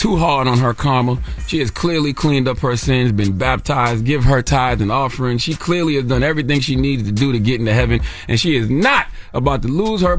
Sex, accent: male, American